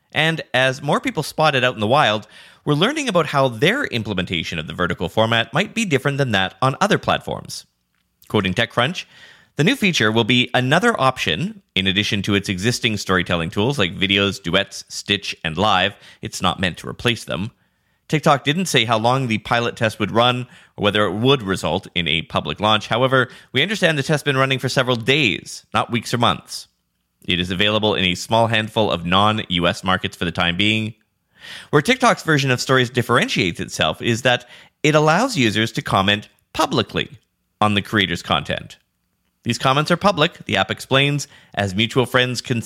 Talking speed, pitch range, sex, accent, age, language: 190 wpm, 100-135 Hz, male, American, 30-49, English